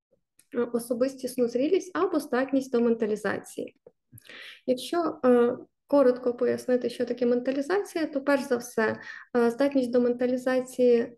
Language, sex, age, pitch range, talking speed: Ukrainian, female, 20-39, 240-275 Hz, 100 wpm